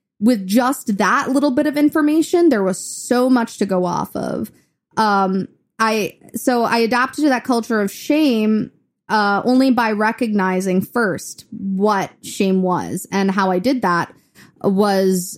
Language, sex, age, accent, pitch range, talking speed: English, female, 20-39, American, 190-245 Hz, 150 wpm